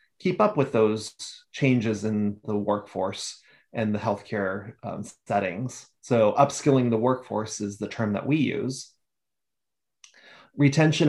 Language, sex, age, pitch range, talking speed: English, male, 30-49, 105-130 Hz, 130 wpm